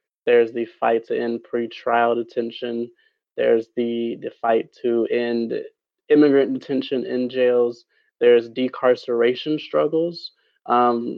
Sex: male